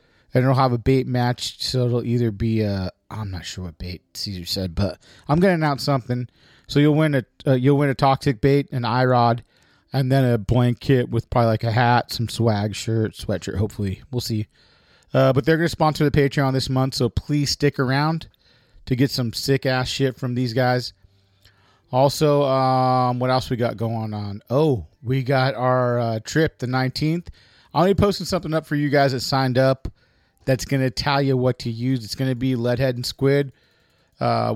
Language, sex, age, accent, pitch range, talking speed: English, male, 40-59, American, 115-140 Hz, 200 wpm